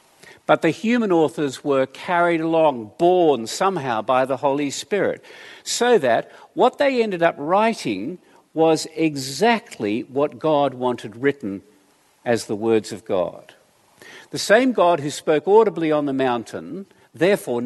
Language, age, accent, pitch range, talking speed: English, 50-69, Australian, 130-195 Hz, 140 wpm